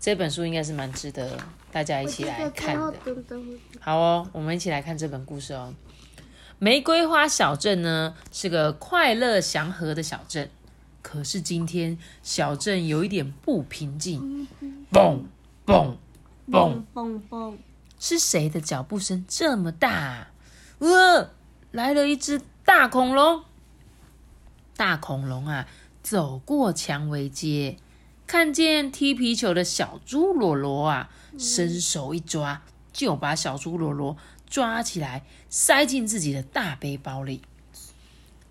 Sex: female